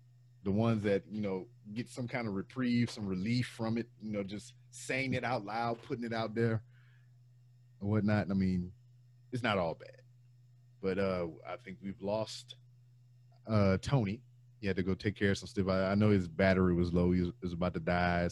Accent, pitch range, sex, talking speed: American, 95-125 Hz, male, 205 wpm